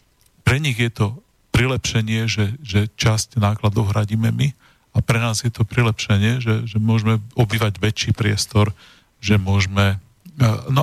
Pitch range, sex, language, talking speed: 105-120 Hz, male, Slovak, 145 wpm